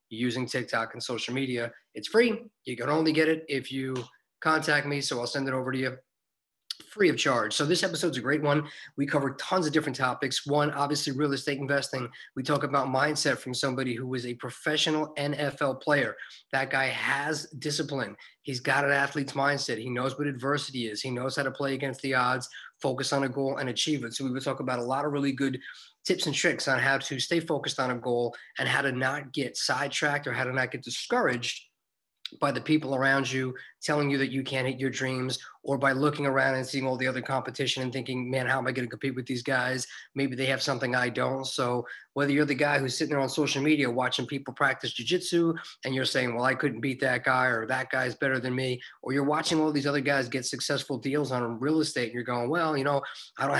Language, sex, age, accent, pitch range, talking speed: English, male, 30-49, American, 130-145 Hz, 235 wpm